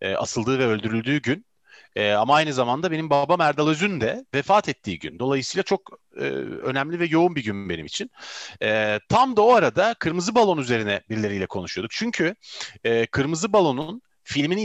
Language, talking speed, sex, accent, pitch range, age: Turkish, 150 wpm, male, native, 115-180 Hz, 40-59